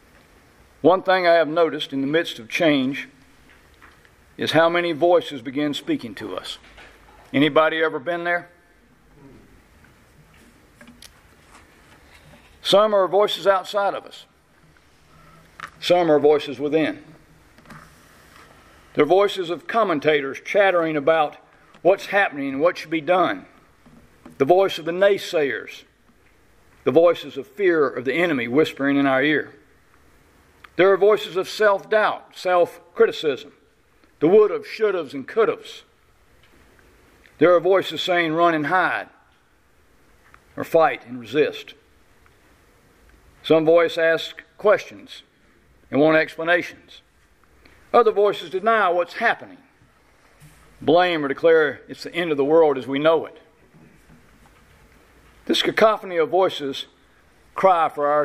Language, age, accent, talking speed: English, 50-69, American, 120 wpm